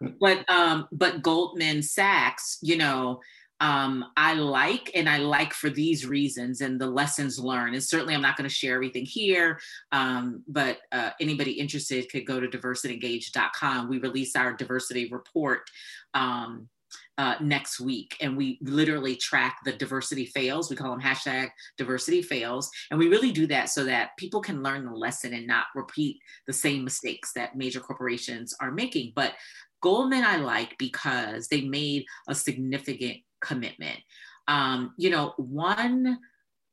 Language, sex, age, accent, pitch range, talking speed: English, female, 30-49, American, 130-210 Hz, 155 wpm